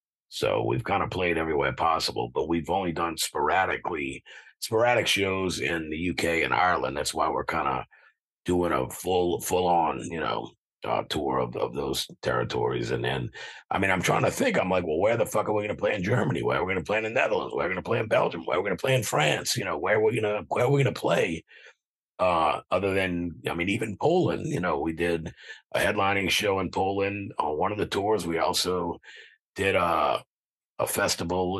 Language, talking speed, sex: English, 230 wpm, male